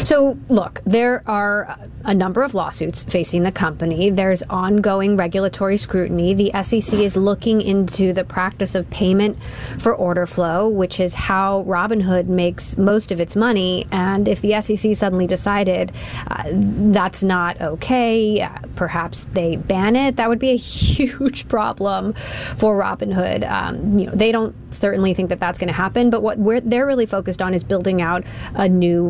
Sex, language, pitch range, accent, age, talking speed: female, English, 180-220 Hz, American, 20-39, 170 wpm